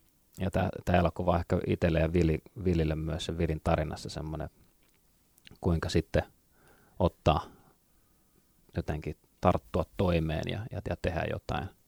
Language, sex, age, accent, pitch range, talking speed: Finnish, male, 30-49, native, 80-100 Hz, 110 wpm